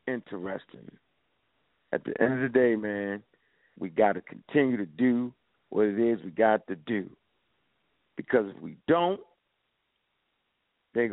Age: 50-69